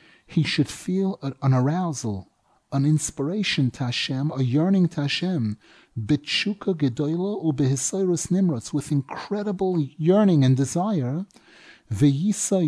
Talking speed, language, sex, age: 105 wpm, English, male, 30-49